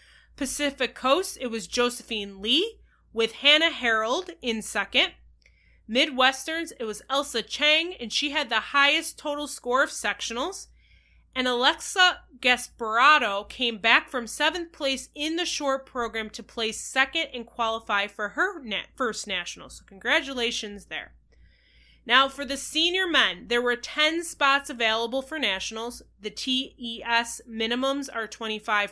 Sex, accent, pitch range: female, American, 220-290 Hz